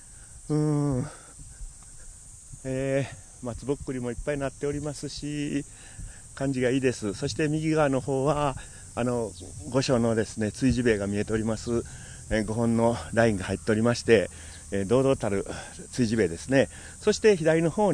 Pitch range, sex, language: 100-140 Hz, male, Japanese